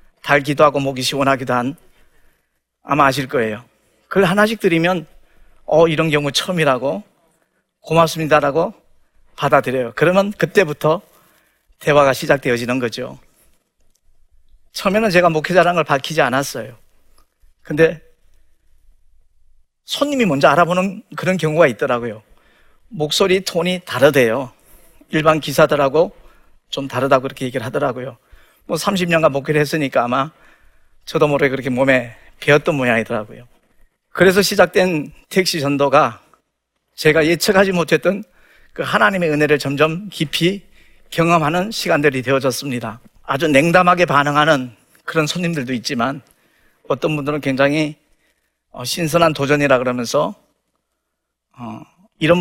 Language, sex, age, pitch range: Korean, male, 40-59, 135-170 Hz